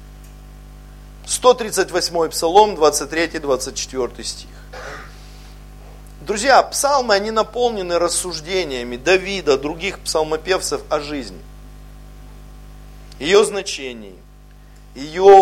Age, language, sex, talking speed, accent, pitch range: 50-69, Russian, male, 65 wpm, native, 150-200 Hz